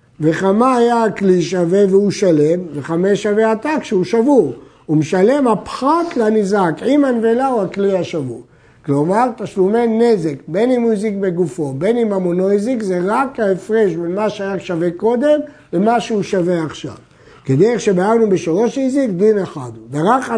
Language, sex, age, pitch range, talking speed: Hebrew, male, 60-79, 160-225 Hz, 155 wpm